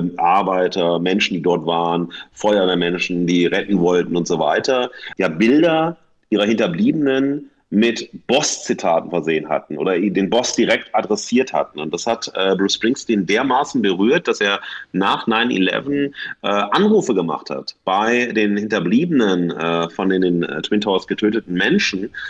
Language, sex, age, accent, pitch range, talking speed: German, male, 30-49, German, 95-130 Hz, 135 wpm